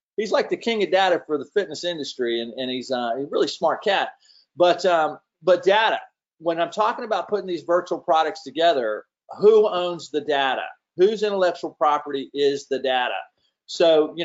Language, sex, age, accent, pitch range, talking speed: English, male, 40-59, American, 140-180 Hz, 175 wpm